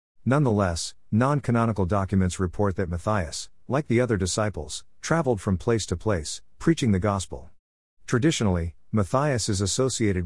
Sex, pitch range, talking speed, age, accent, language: male, 90-115 Hz, 130 wpm, 50-69, American, English